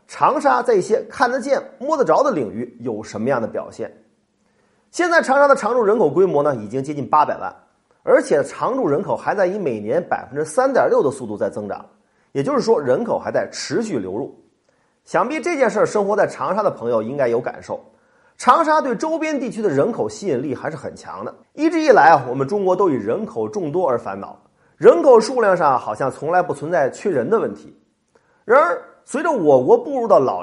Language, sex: Chinese, male